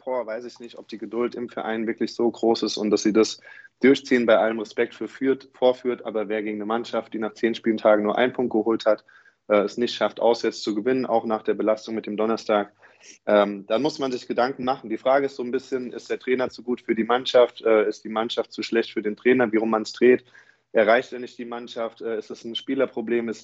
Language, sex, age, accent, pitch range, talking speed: German, male, 20-39, German, 110-120 Hz, 250 wpm